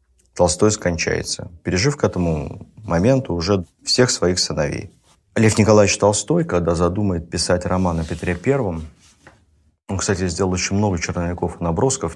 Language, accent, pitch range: Russian, native, 80-105 Hz